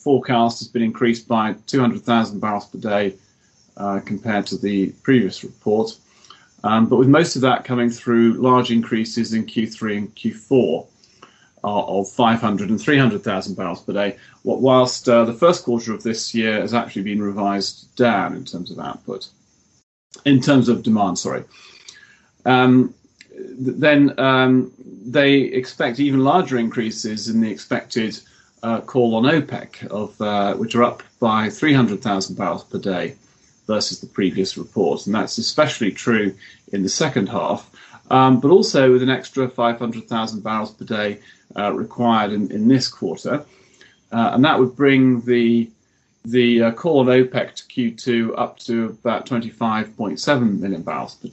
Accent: British